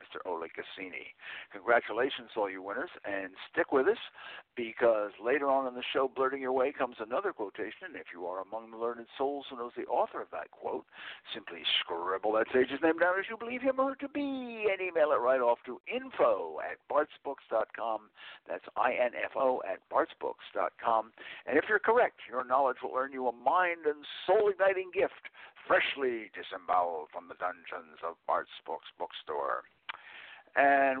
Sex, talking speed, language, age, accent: male, 170 wpm, English, 60-79, American